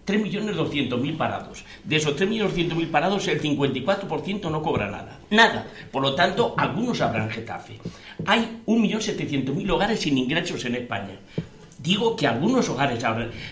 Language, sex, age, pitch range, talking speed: Spanish, male, 60-79, 135-195 Hz, 130 wpm